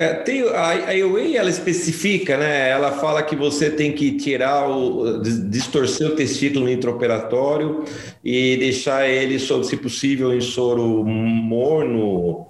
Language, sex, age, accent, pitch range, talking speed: Portuguese, male, 40-59, Brazilian, 115-145 Hz, 130 wpm